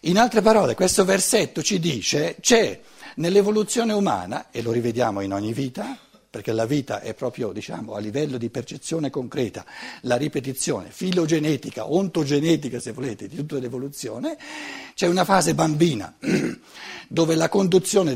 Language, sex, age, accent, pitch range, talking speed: Italian, male, 60-79, native, 140-215 Hz, 140 wpm